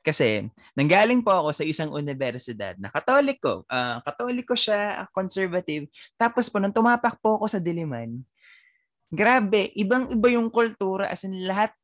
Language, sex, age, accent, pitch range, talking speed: Filipino, male, 20-39, native, 120-200 Hz, 140 wpm